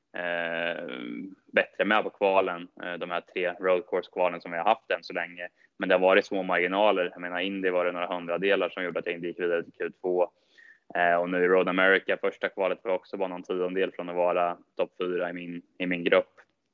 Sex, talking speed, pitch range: male, 235 wpm, 85-95 Hz